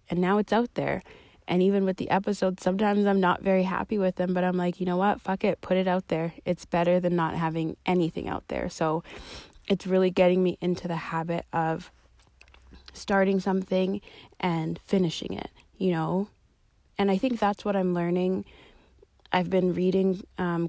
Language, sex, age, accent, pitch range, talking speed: English, female, 20-39, American, 160-185 Hz, 185 wpm